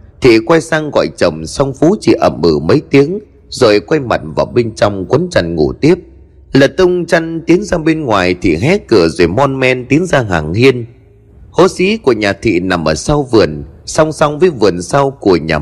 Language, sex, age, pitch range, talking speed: Vietnamese, male, 30-49, 100-160 Hz, 210 wpm